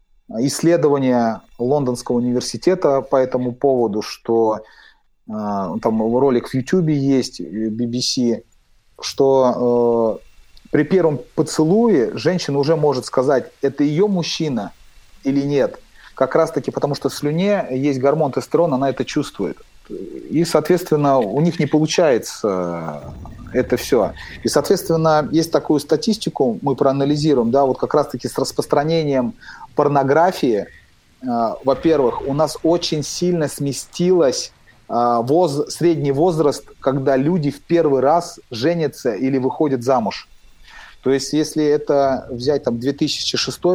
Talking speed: 125 wpm